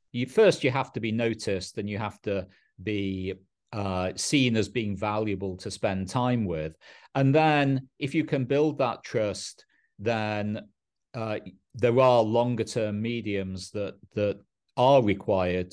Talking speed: 155 wpm